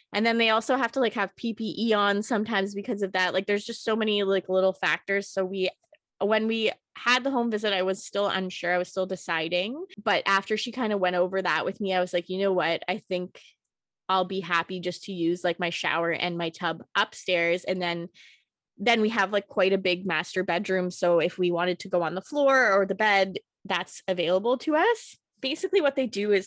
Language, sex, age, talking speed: English, female, 20-39, 230 wpm